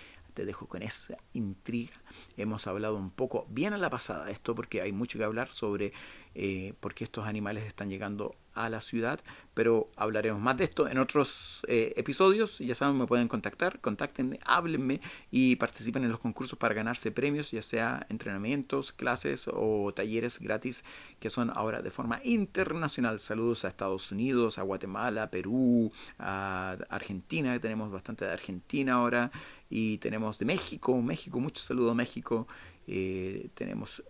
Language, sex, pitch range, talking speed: Spanish, male, 95-125 Hz, 160 wpm